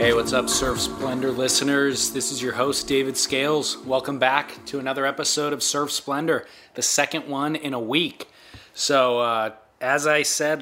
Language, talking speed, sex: English, 175 wpm, male